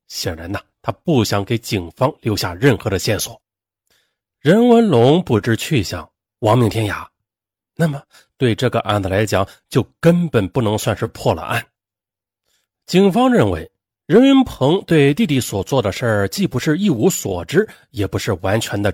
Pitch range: 105-170 Hz